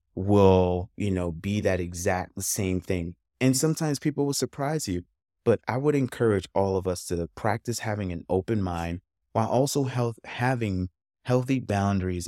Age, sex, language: 30-49, male, English